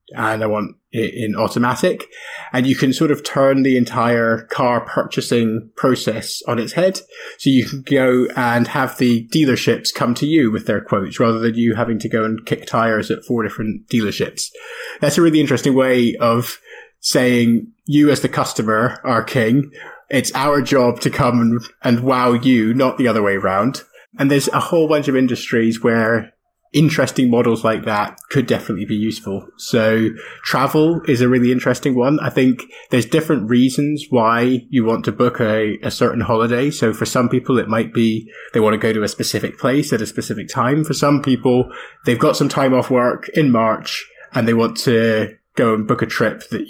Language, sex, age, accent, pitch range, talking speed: English, male, 20-39, British, 115-135 Hz, 195 wpm